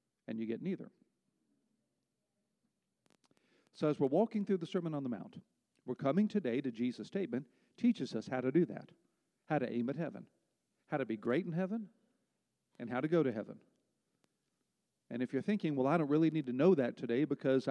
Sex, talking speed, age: male, 195 wpm, 50-69